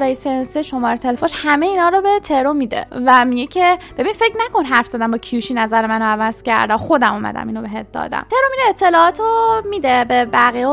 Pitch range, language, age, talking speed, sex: 250-340 Hz, Persian, 20-39, 195 wpm, female